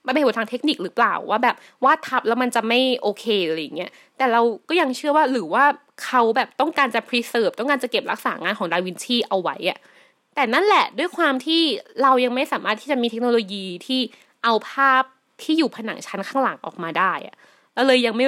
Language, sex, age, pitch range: Thai, female, 20-39, 230-315 Hz